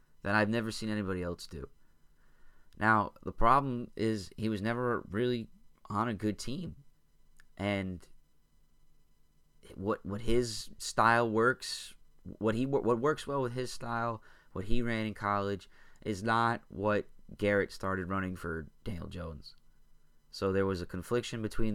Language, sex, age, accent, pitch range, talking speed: English, male, 20-39, American, 90-110 Hz, 145 wpm